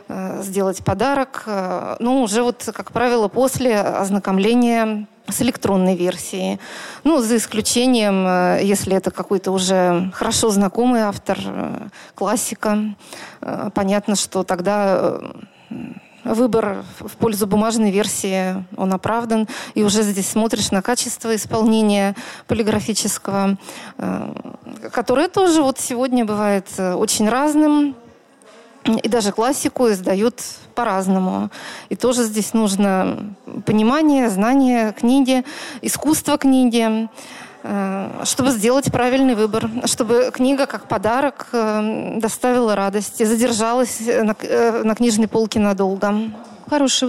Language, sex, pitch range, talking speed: Russian, female, 200-245 Hz, 100 wpm